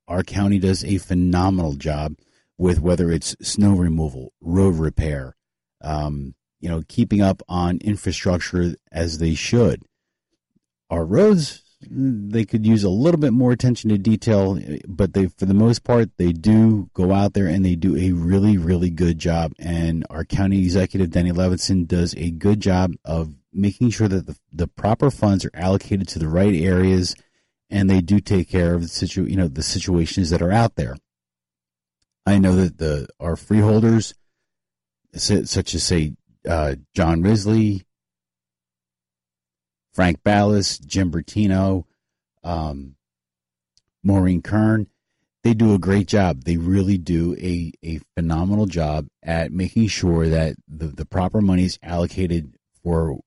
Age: 40-59